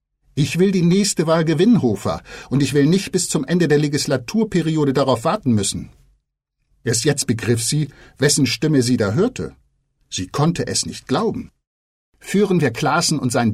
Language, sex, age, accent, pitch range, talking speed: German, male, 50-69, German, 115-150 Hz, 170 wpm